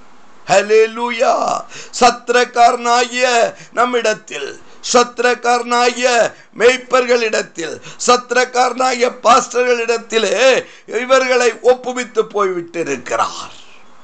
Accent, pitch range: native, 220-255 Hz